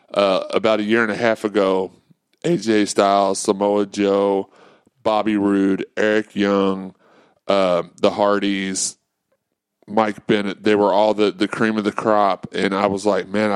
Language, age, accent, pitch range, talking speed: English, 30-49, American, 100-115 Hz, 155 wpm